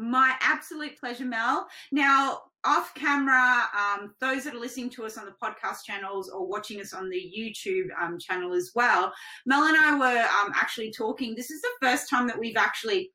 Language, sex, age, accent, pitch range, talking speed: English, female, 30-49, Australian, 205-265 Hz, 195 wpm